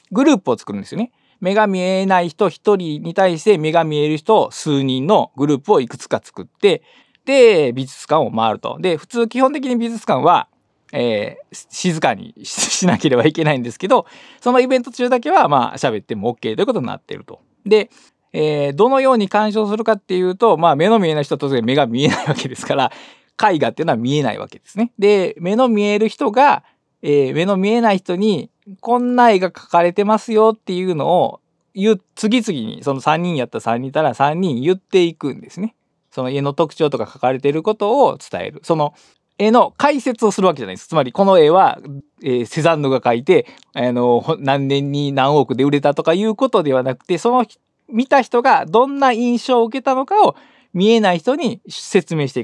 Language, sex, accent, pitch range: Japanese, male, native, 150-235 Hz